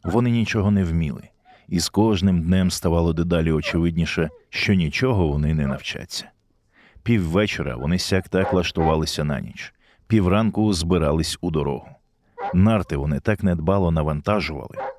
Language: Ukrainian